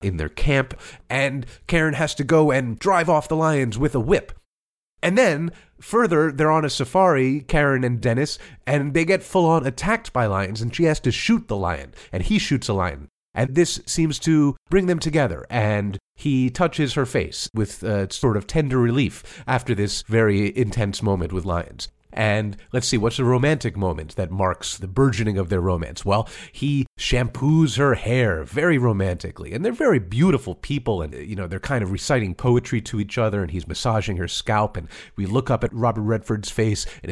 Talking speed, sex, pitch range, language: 195 wpm, male, 100-145 Hz, English